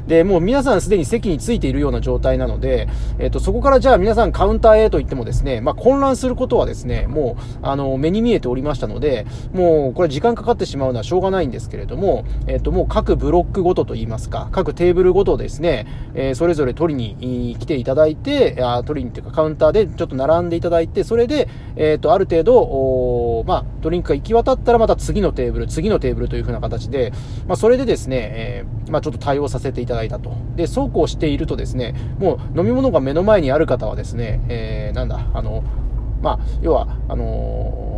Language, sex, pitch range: Japanese, male, 120-165 Hz